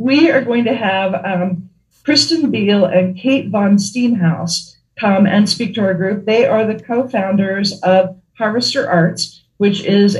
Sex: female